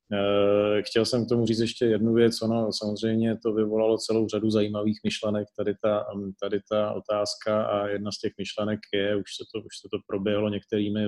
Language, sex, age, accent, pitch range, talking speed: Czech, male, 30-49, native, 105-110 Hz, 170 wpm